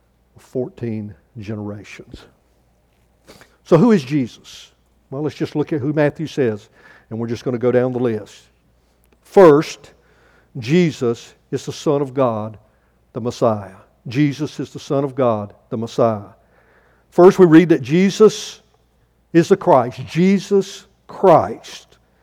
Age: 60-79